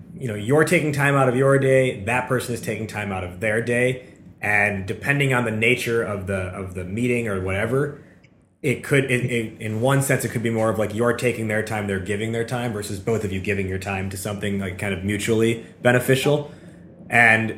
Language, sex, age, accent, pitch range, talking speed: English, male, 20-39, American, 105-135 Hz, 225 wpm